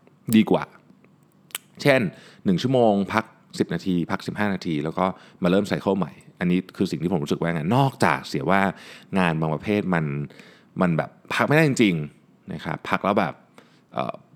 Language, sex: Thai, male